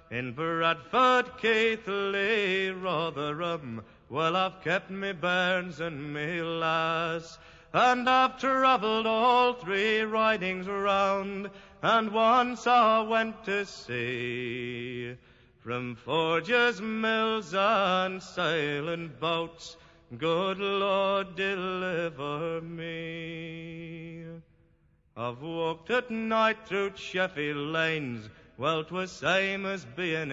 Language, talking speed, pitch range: English, 95 wpm, 160-200 Hz